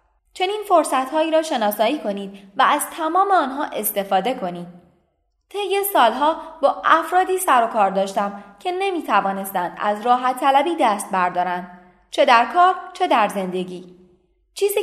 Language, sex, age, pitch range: Persian, female, 20-39, 205-340 Hz